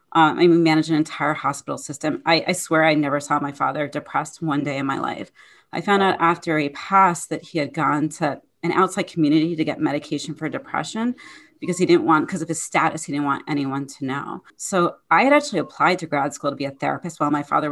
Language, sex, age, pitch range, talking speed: English, female, 30-49, 145-170 Hz, 235 wpm